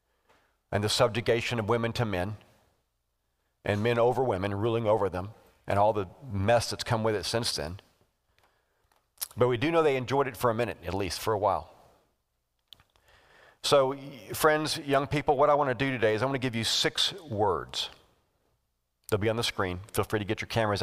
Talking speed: 195 wpm